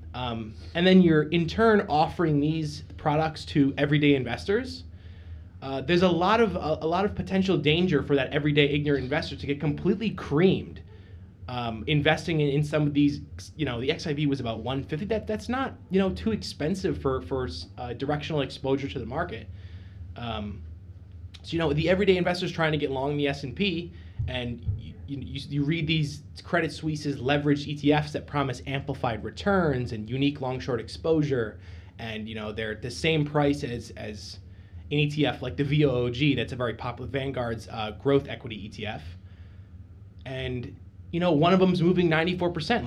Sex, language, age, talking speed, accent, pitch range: male, English, 20-39, 180 wpm, American, 110-155 Hz